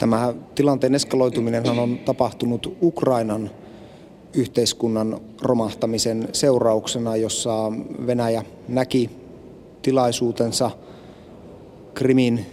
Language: Finnish